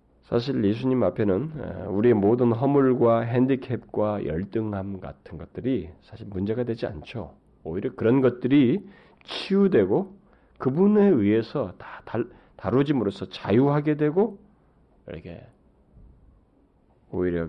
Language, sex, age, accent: Korean, male, 40-59, native